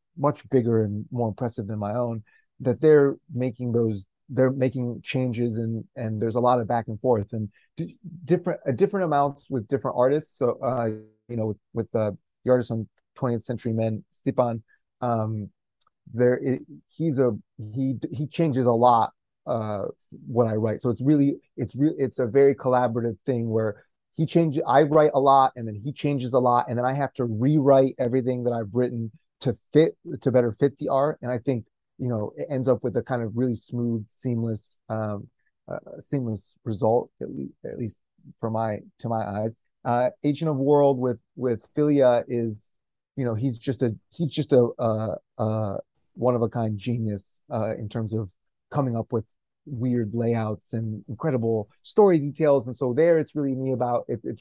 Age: 30-49